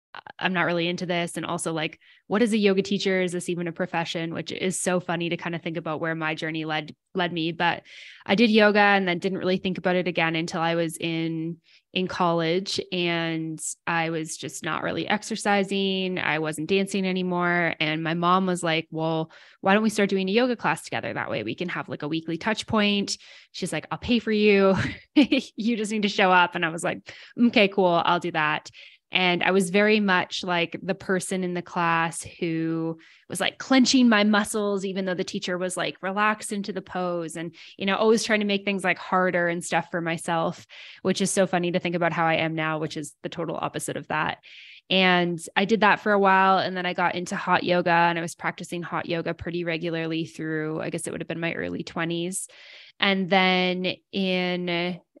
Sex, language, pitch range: female, English, 165-195 Hz